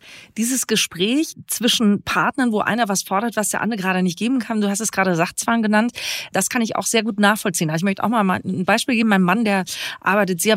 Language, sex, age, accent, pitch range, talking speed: German, female, 30-49, German, 185-245 Hz, 235 wpm